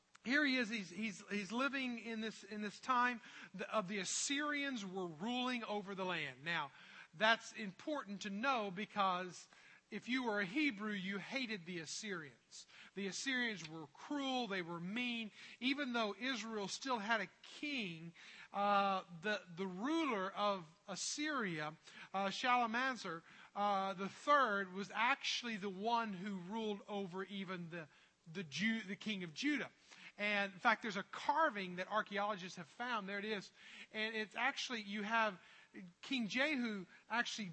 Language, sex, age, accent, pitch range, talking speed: English, male, 40-59, American, 190-235 Hz, 155 wpm